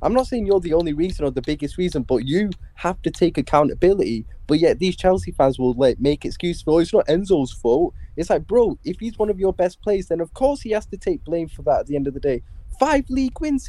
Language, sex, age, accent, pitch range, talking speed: English, male, 10-29, British, 150-215 Hz, 265 wpm